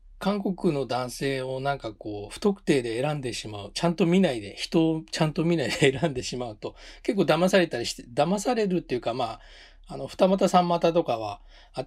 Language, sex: Japanese, male